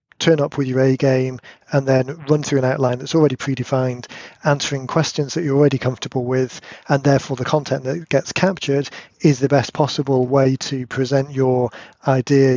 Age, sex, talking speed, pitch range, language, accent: 40-59, male, 175 wpm, 130-145 Hz, English, British